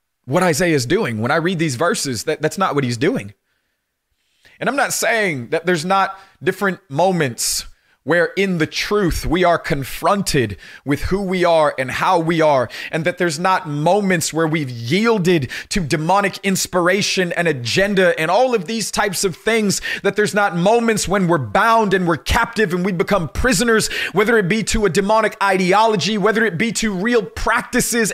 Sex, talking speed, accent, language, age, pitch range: male, 185 wpm, American, English, 30-49, 135-205 Hz